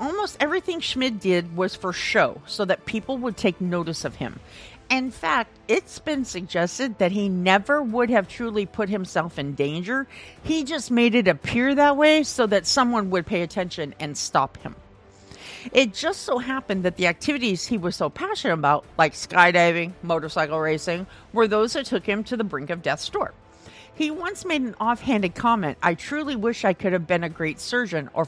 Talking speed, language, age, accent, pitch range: 190 wpm, English, 50-69, American, 180-260 Hz